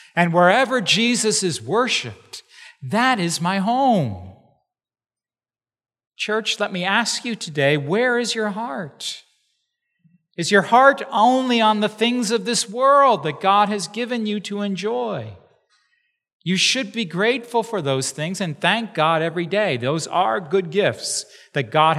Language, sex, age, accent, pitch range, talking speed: English, male, 40-59, American, 150-215 Hz, 145 wpm